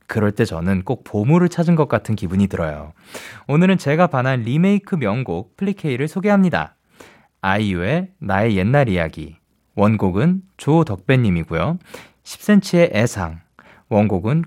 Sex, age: male, 20-39